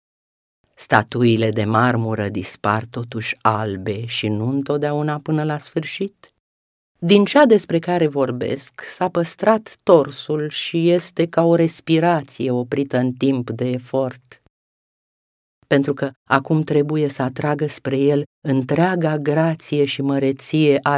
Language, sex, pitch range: Romanian, female, 120-165 Hz